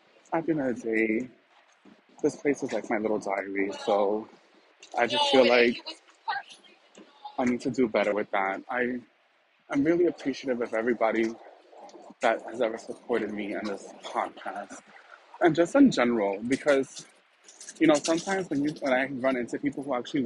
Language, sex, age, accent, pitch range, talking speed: English, male, 20-39, American, 115-145 Hz, 170 wpm